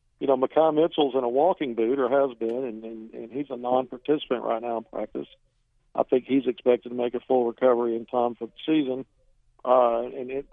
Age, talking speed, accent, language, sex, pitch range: 50-69, 215 wpm, American, English, male, 120-145 Hz